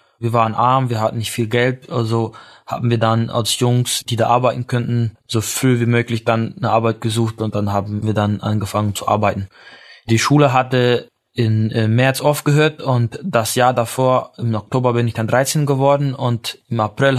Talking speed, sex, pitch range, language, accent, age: 190 wpm, male, 110-130 Hz, German, German, 20-39